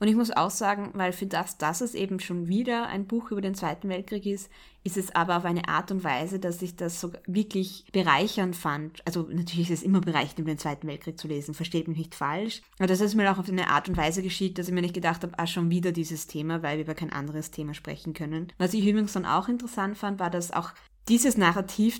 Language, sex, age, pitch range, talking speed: German, female, 20-39, 170-200 Hz, 255 wpm